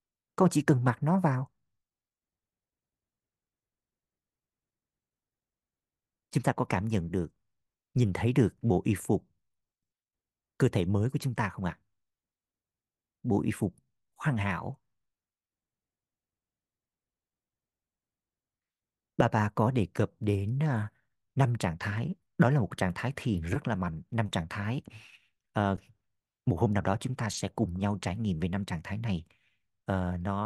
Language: Vietnamese